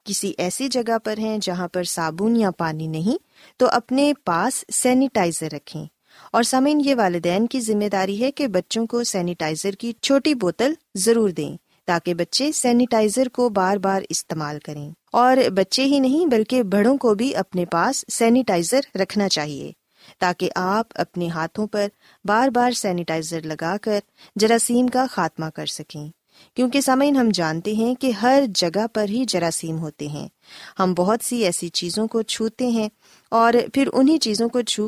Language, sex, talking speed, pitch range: Urdu, female, 165 wpm, 175-250 Hz